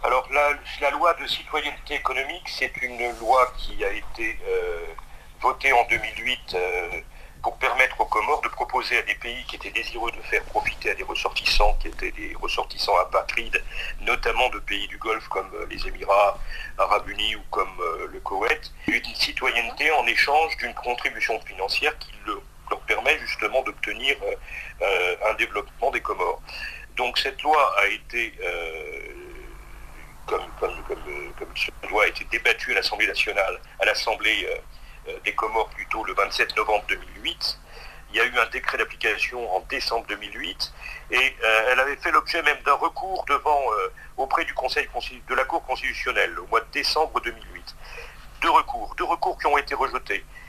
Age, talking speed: 50-69, 170 wpm